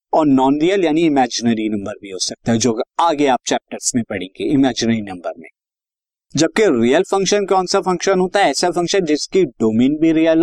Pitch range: 125-175 Hz